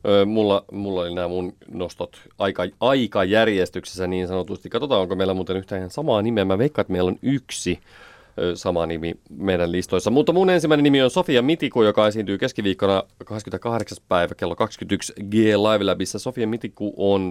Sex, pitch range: male, 95-110 Hz